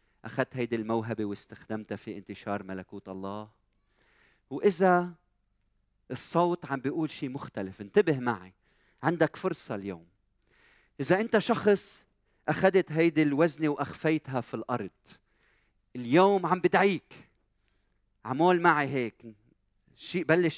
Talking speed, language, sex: 105 wpm, Arabic, male